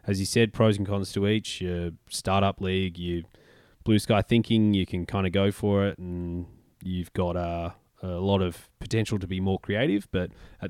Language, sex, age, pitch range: English, male, 20-39, 90-105 Hz